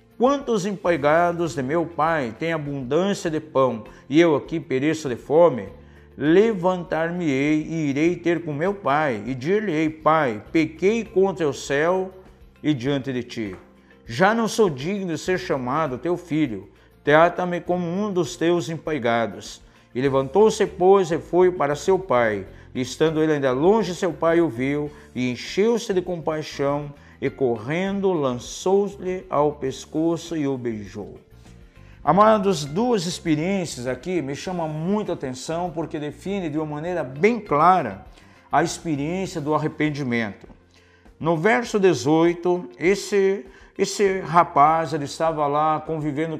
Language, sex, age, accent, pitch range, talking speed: Portuguese, male, 50-69, Brazilian, 140-180 Hz, 140 wpm